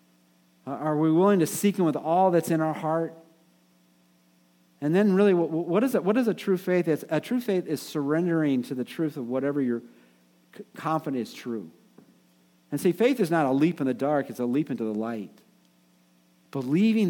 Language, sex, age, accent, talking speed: English, male, 50-69, American, 185 wpm